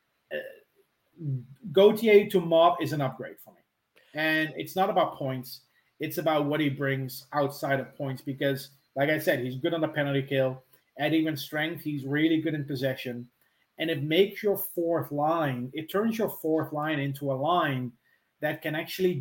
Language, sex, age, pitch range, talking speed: English, male, 30-49, 135-160 Hz, 180 wpm